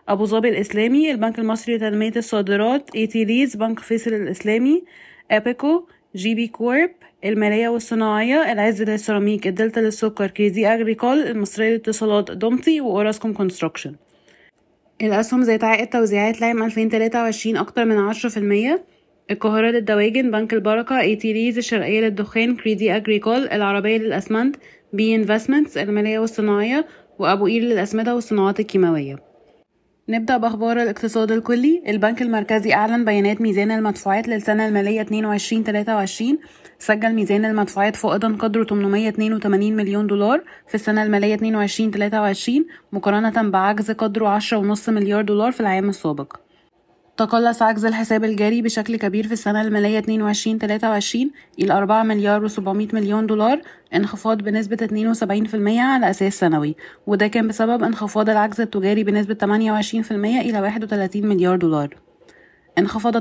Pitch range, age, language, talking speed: 205-225 Hz, 20-39, Arabic, 125 wpm